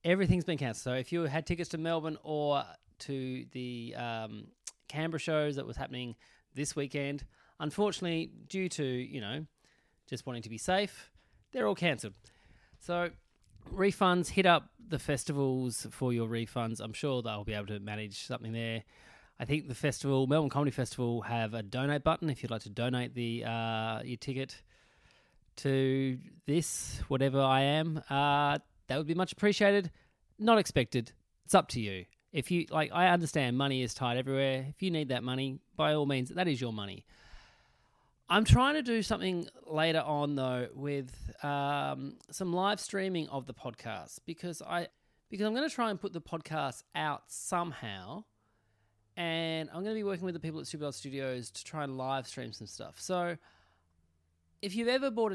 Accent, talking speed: Australian, 175 wpm